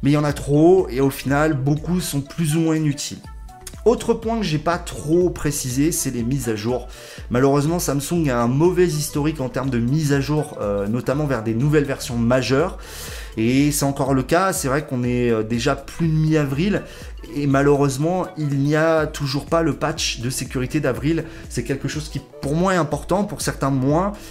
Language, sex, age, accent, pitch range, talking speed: French, male, 30-49, French, 130-165 Hz, 200 wpm